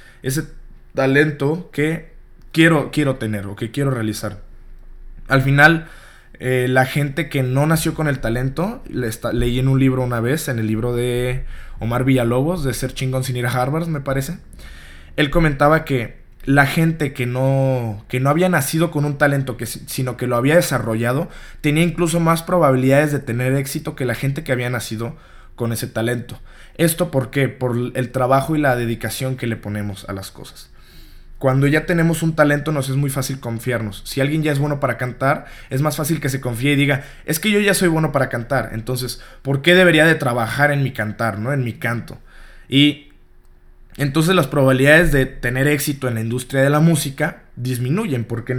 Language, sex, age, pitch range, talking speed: Spanish, male, 20-39, 120-150 Hz, 195 wpm